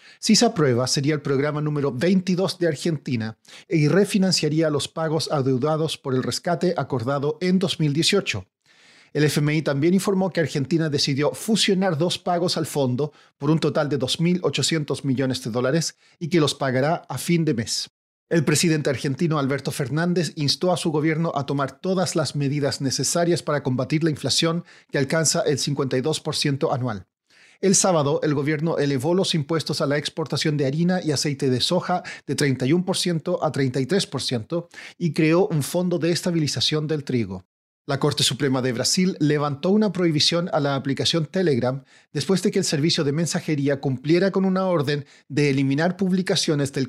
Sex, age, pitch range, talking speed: male, 40-59, 140-170 Hz, 165 wpm